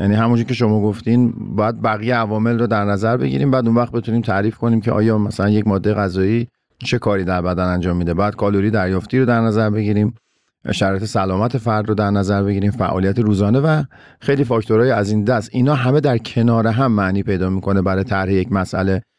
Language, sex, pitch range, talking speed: Persian, male, 100-120 Hz, 200 wpm